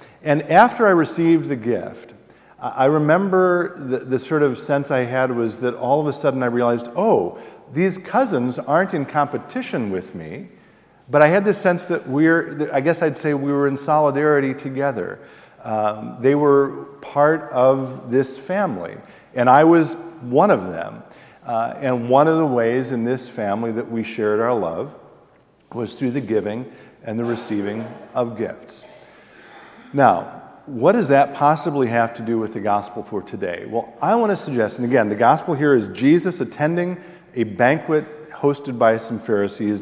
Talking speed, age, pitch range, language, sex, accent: 175 wpm, 50-69, 115-150 Hz, English, male, American